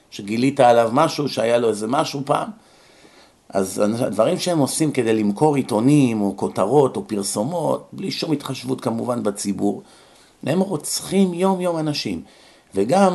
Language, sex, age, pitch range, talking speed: Hebrew, male, 50-69, 110-155 Hz, 135 wpm